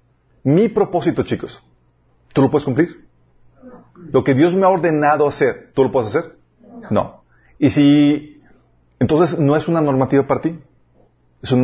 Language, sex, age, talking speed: Spanish, male, 40-59, 155 wpm